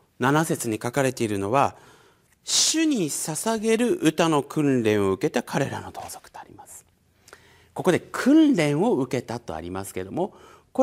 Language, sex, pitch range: Japanese, male, 145-235 Hz